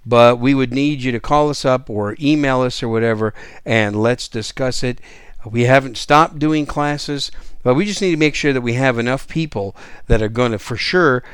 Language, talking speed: English, 215 wpm